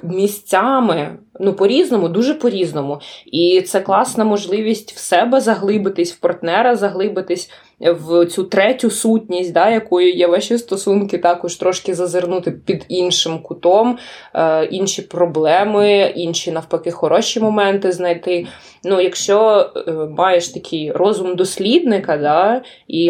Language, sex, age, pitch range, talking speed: Ukrainian, female, 20-39, 170-200 Hz, 120 wpm